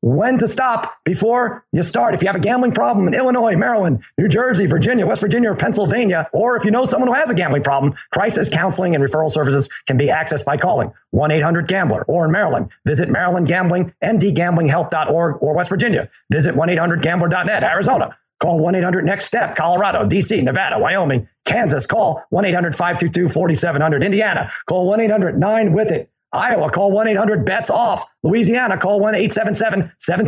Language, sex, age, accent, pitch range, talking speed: English, male, 40-59, American, 155-210 Hz, 155 wpm